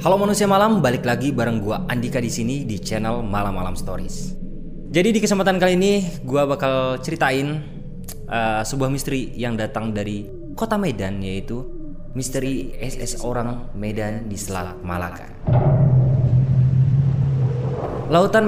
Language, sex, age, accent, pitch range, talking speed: Indonesian, male, 20-39, native, 115-160 Hz, 130 wpm